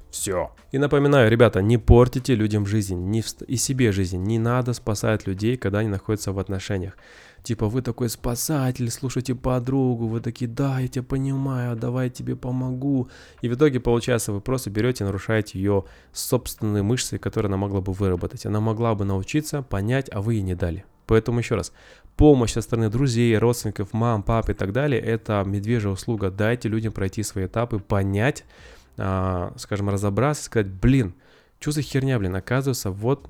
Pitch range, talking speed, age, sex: 100-125 Hz, 175 wpm, 20-39, male